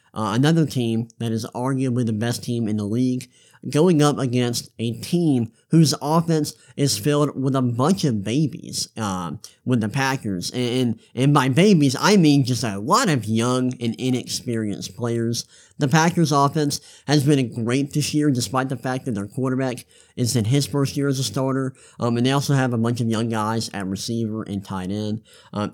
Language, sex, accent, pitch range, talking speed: English, male, American, 115-140 Hz, 190 wpm